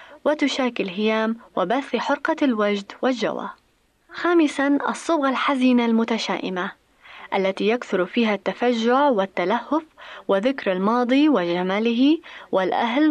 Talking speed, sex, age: 85 wpm, female, 20-39